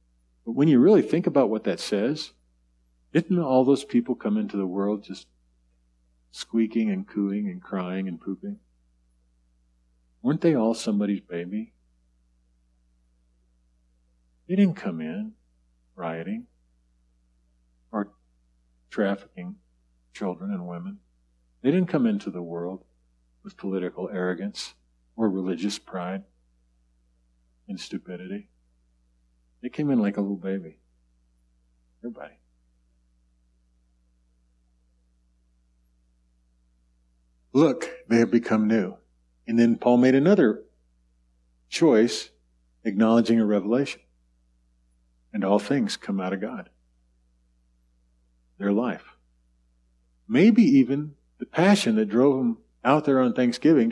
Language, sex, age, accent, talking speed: English, male, 50-69, American, 105 wpm